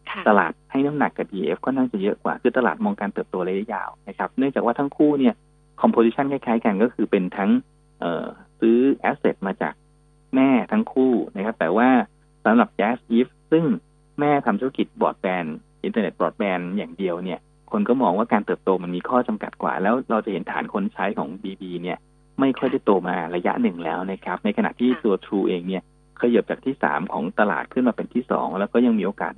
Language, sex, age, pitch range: Thai, male, 20-39, 105-150 Hz